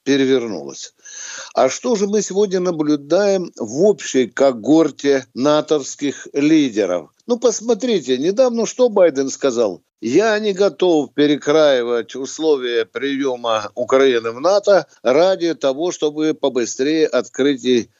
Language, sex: Russian, male